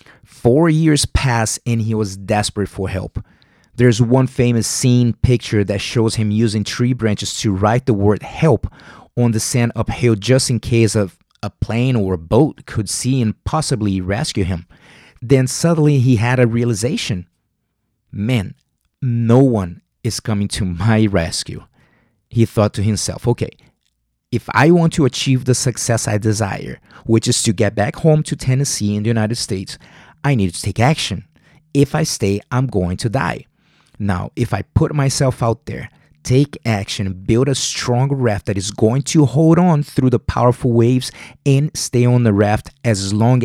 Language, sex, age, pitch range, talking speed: English, male, 30-49, 105-130 Hz, 175 wpm